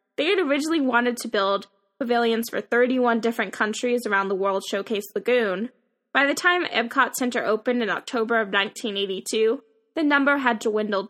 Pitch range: 210-255 Hz